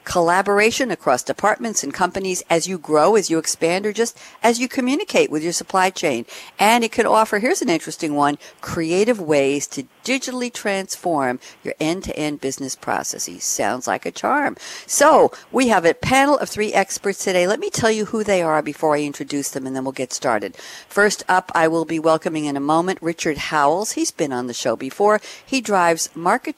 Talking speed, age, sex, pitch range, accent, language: 200 wpm, 60-79, female, 145-200 Hz, American, English